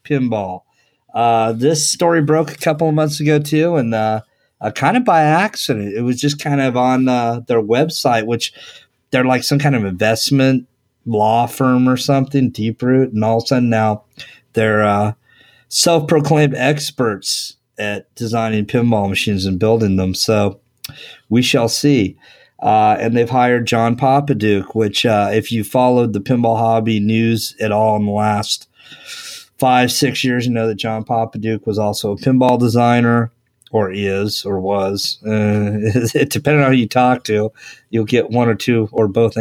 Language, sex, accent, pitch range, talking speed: English, male, American, 110-130 Hz, 170 wpm